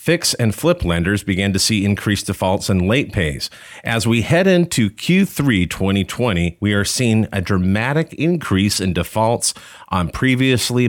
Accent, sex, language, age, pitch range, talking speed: American, male, English, 40-59, 90-115 Hz, 155 wpm